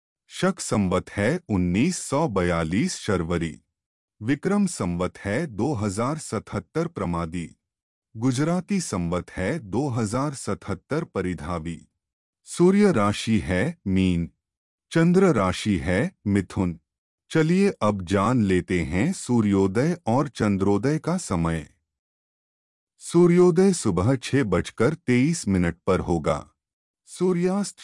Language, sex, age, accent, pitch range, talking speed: Hindi, male, 30-49, native, 90-150 Hz, 95 wpm